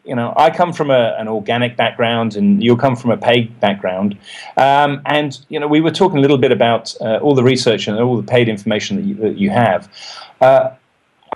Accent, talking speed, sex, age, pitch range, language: British, 220 wpm, male, 40-59, 100-135 Hz, English